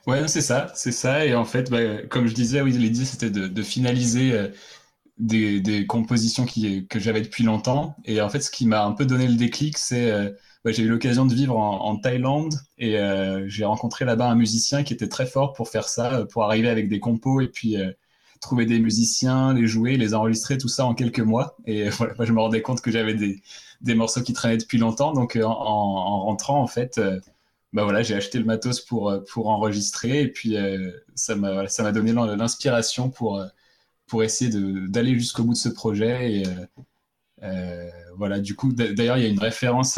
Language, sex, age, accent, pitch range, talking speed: French, male, 20-39, French, 105-125 Hz, 225 wpm